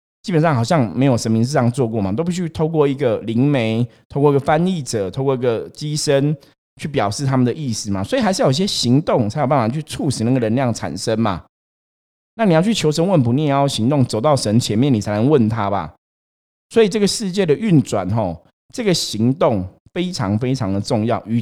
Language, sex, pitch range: Chinese, male, 105-140 Hz